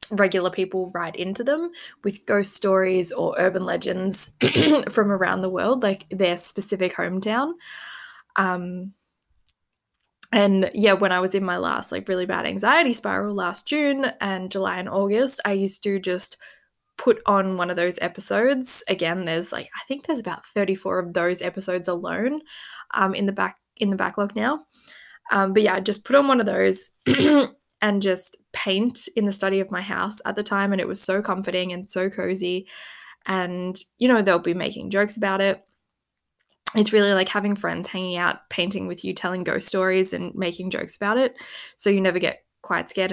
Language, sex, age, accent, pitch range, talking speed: English, female, 10-29, Australian, 185-215 Hz, 185 wpm